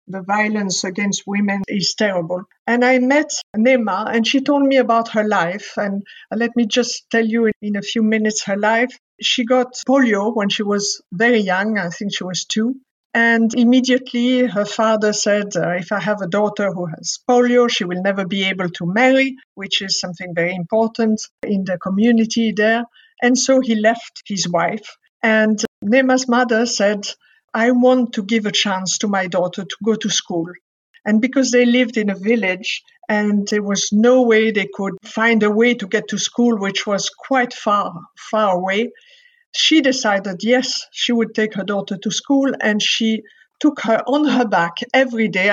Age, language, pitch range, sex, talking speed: 50-69, English, 200-240 Hz, female, 185 wpm